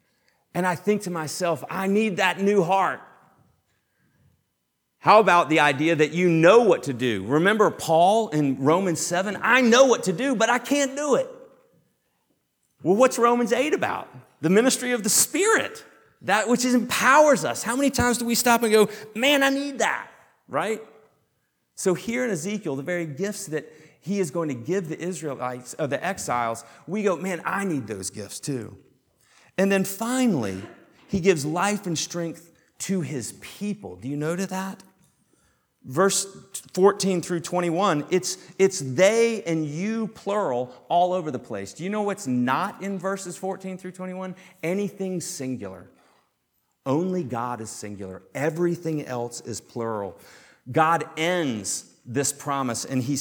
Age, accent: 40-59, American